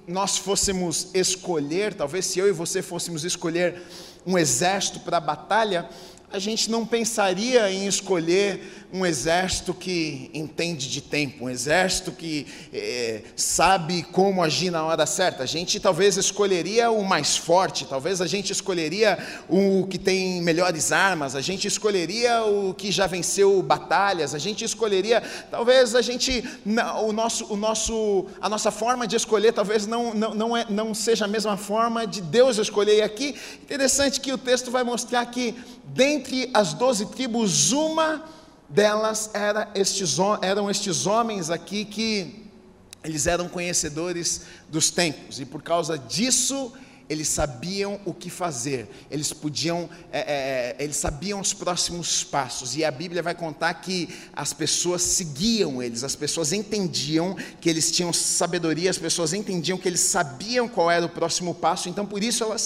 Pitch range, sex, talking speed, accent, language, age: 170-215 Hz, male, 155 wpm, Brazilian, Portuguese, 40-59